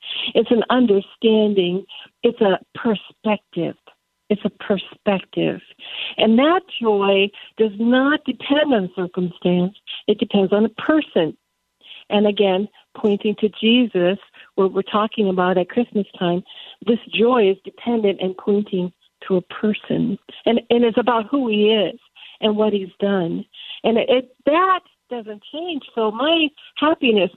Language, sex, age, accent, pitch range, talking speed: English, female, 60-79, American, 195-240 Hz, 140 wpm